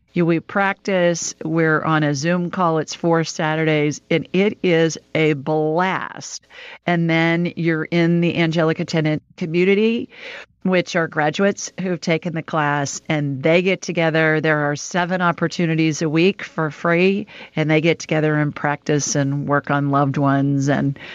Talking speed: 155 wpm